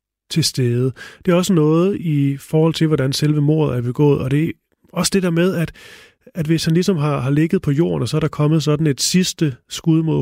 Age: 30-49